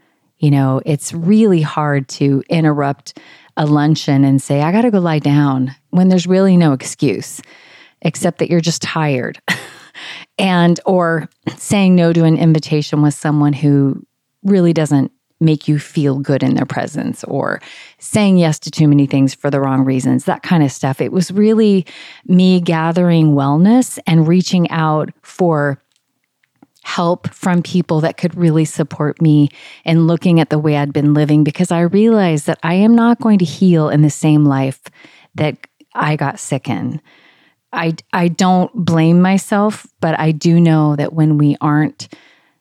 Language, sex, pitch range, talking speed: English, female, 150-180 Hz, 170 wpm